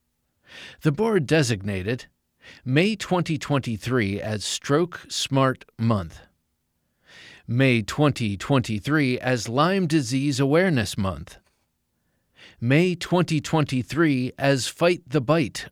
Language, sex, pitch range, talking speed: English, male, 110-155 Hz, 85 wpm